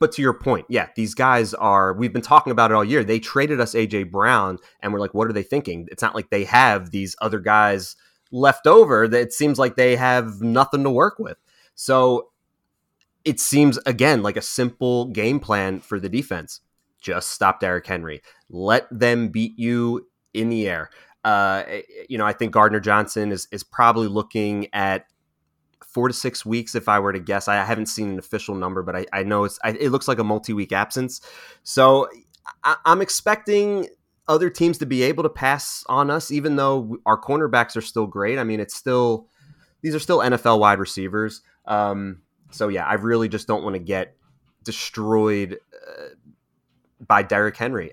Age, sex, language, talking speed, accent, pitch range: 30-49, male, English, 195 wpm, American, 100-130 Hz